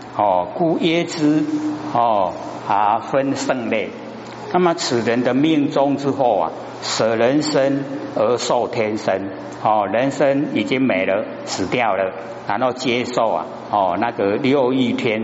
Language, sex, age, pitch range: Chinese, male, 60-79, 105-150 Hz